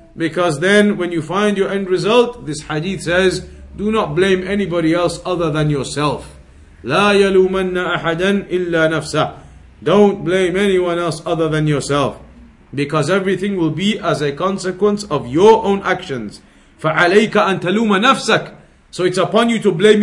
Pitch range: 170-200 Hz